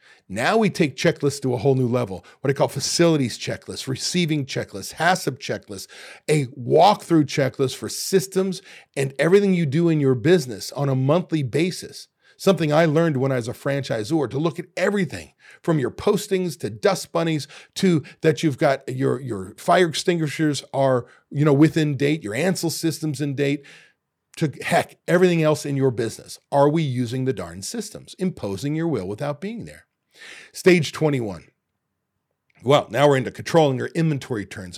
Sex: male